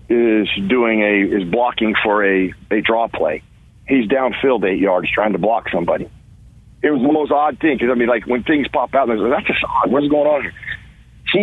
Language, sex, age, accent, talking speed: English, male, 50-69, American, 215 wpm